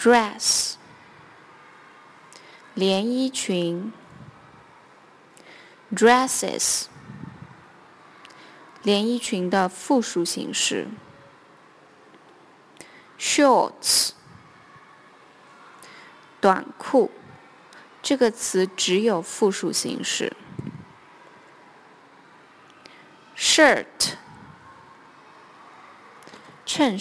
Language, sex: Chinese, female